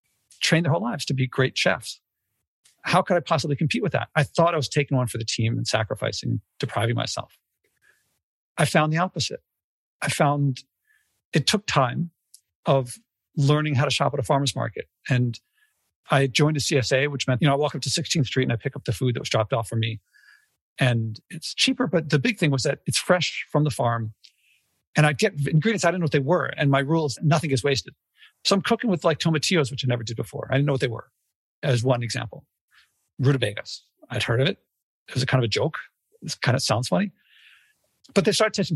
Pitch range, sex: 130-175 Hz, male